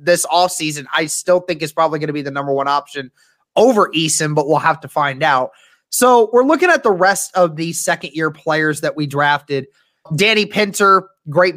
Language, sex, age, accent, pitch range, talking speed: English, male, 20-39, American, 150-180 Hz, 200 wpm